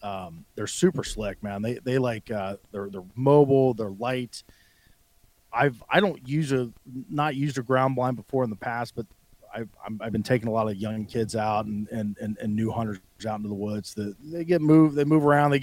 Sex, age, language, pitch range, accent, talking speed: male, 30-49, English, 105-130 Hz, American, 220 wpm